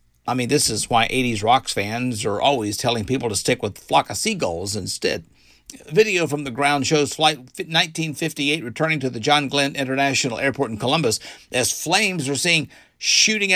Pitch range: 120-180 Hz